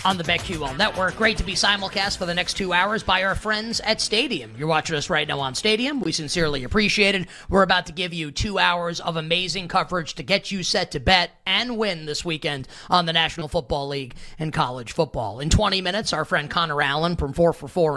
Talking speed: 225 wpm